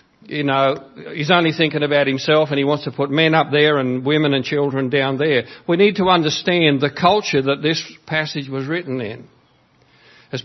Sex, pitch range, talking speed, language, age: male, 135-170 Hz, 195 wpm, English, 60-79